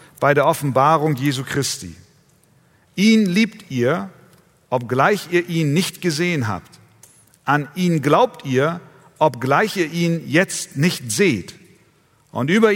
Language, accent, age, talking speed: German, German, 50-69, 120 wpm